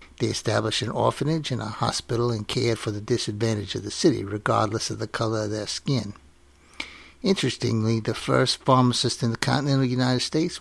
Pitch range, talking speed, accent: 100-125 Hz, 175 wpm, American